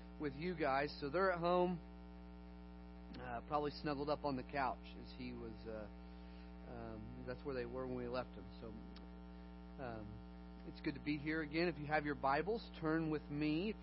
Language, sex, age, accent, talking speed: English, male, 40-59, American, 190 wpm